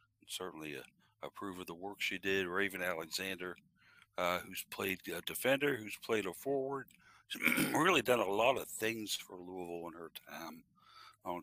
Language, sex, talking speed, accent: English, male, 170 wpm, American